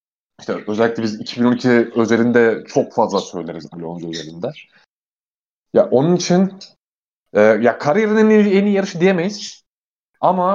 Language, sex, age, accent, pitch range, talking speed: Turkish, male, 30-49, native, 115-170 Hz, 115 wpm